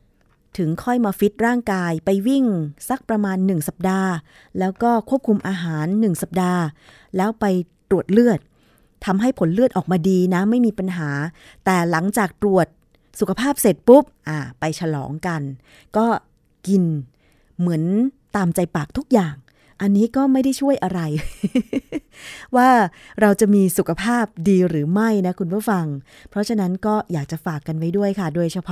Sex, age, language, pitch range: female, 20-39, Thai, 170-220 Hz